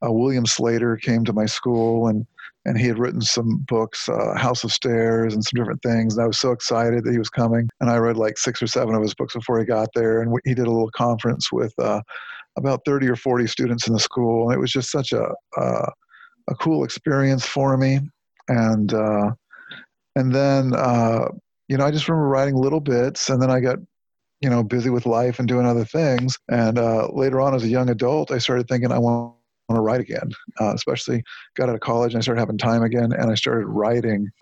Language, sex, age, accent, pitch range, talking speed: English, male, 50-69, American, 115-130 Hz, 230 wpm